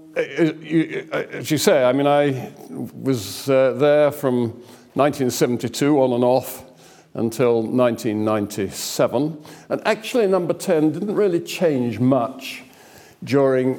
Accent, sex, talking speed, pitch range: British, male, 105 wpm, 120-155 Hz